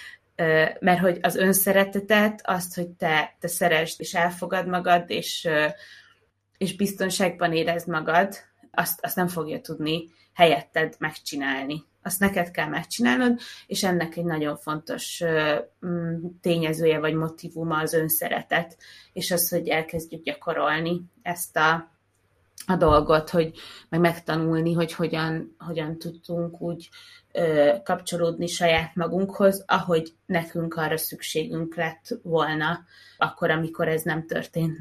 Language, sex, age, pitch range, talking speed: Hungarian, female, 20-39, 160-180 Hz, 115 wpm